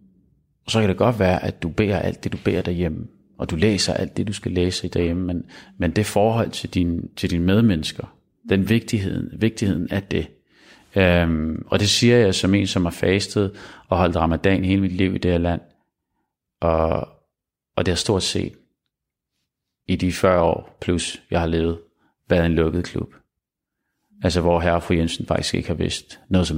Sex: male